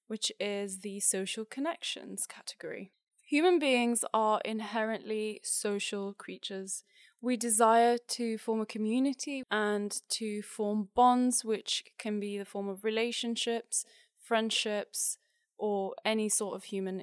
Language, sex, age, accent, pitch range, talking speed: English, female, 20-39, British, 200-230 Hz, 125 wpm